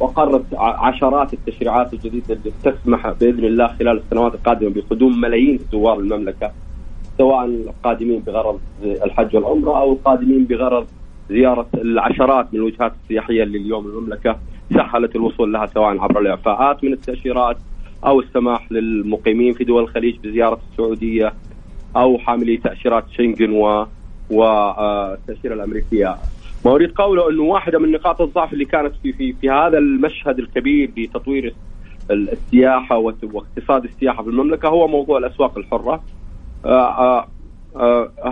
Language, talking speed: English, 125 wpm